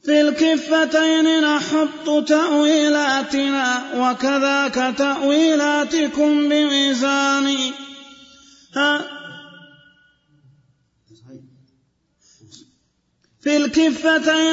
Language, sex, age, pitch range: Arabic, male, 30-49, 275-300 Hz